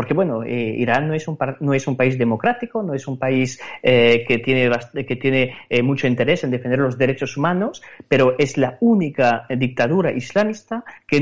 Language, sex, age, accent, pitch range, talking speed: Spanish, male, 30-49, Spanish, 120-165 Hz, 195 wpm